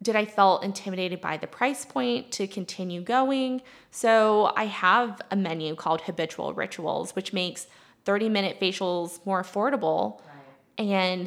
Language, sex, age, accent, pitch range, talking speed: English, female, 20-39, American, 175-210 Hz, 140 wpm